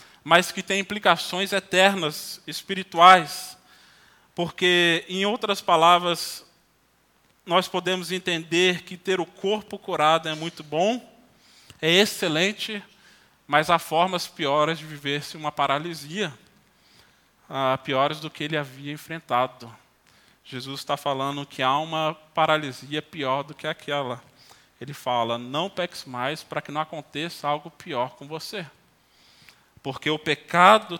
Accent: Brazilian